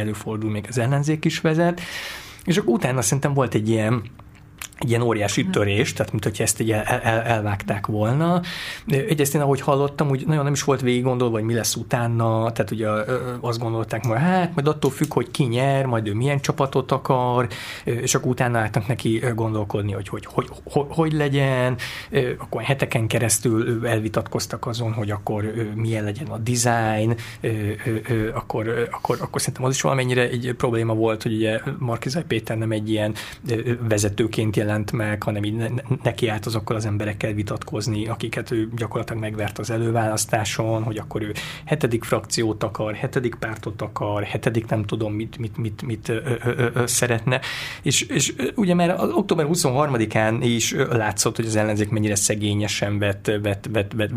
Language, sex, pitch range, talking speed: Hungarian, male, 110-130 Hz, 155 wpm